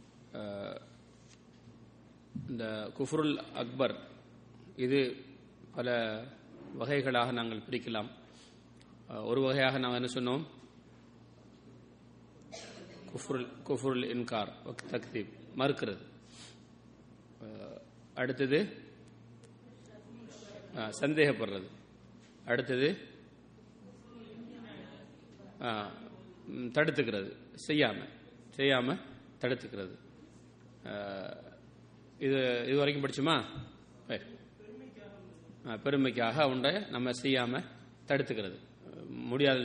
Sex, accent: male, Indian